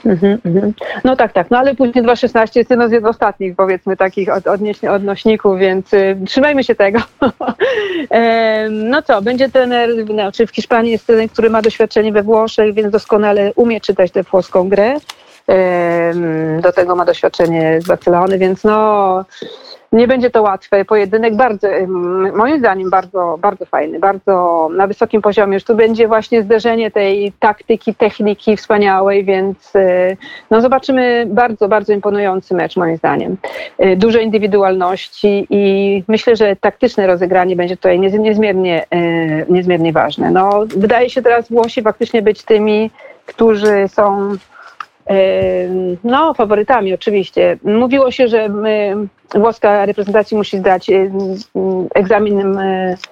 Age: 40-59